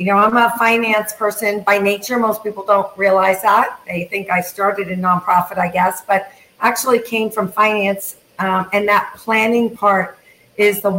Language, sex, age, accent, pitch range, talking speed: English, female, 50-69, American, 195-225 Hz, 180 wpm